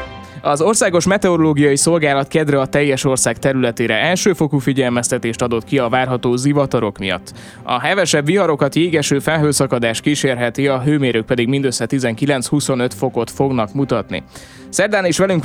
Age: 20-39